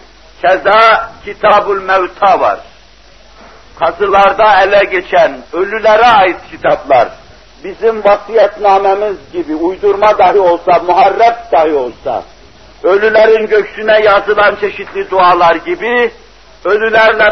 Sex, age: male, 60-79